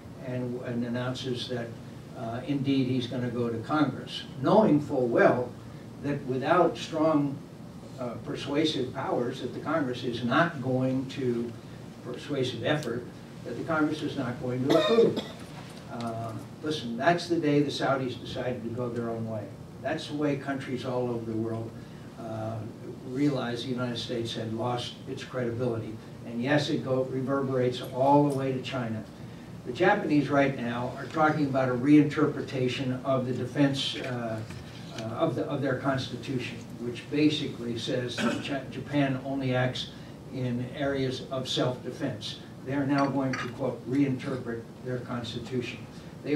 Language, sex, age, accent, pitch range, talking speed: English, male, 60-79, American, 120-140 Hz, 150 wpm